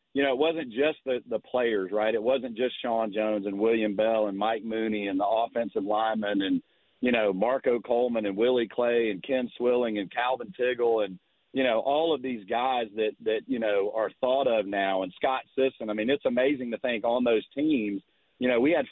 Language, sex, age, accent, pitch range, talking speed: English, male, 40-59, American, 110-135 Hz, 220 wpm